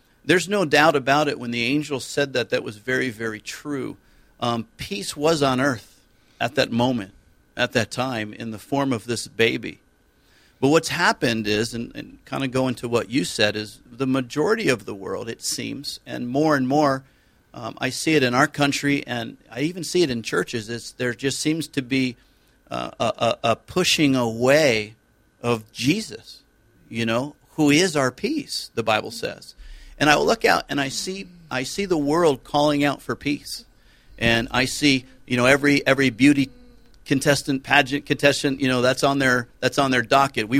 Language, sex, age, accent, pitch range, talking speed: English, male, 50-69, American, 115-145 Hz, 190 wpm